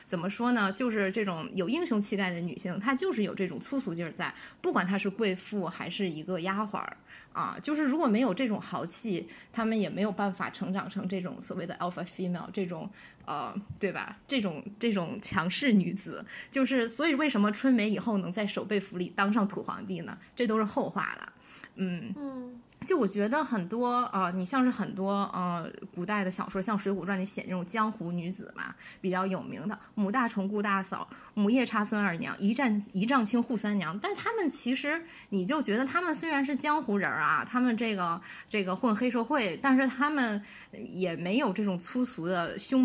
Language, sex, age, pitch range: Chinese, female, 20-39, 185-240 Hz